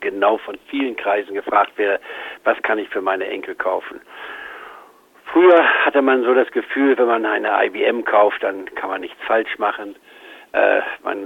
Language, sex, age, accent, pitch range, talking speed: German, male, 60-79, German, 295-430 Hz, 165 wpm